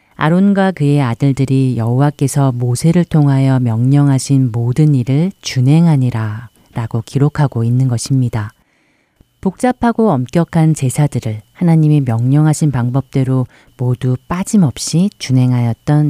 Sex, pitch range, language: female, 125-155 Hz, Korean